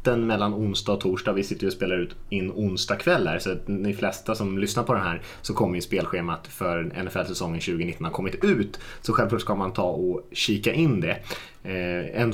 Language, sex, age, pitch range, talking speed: Swedish, male, 20-39, 95-120 Hz, 195 wpm